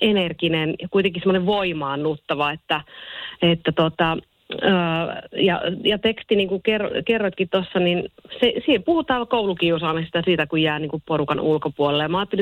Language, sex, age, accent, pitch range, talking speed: Finnish, female, 30-49, native, 160-195 Hz, 155 wpm